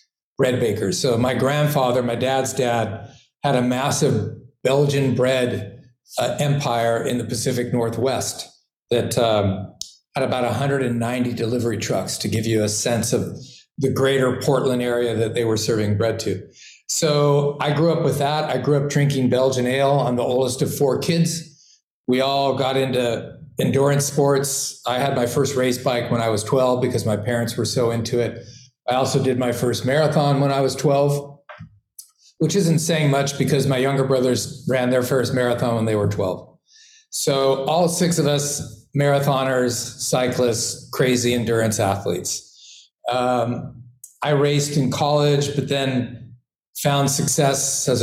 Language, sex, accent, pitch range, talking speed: English, male, American, 120-140 Hz, 160 wpm